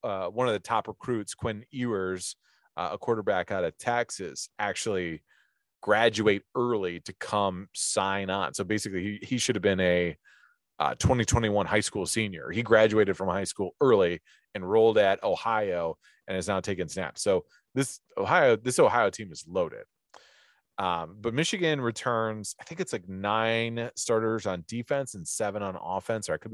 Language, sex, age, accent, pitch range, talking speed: English, male, 30-49, American, 95-120 Hz, 170 wpm